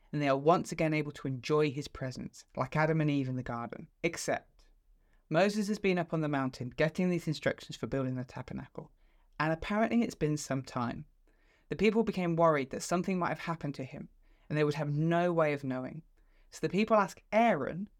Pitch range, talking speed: 135-175 Hz, 205 wpm